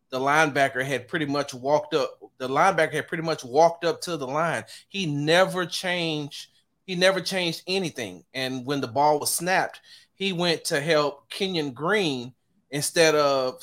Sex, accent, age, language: male, American, 30-49, English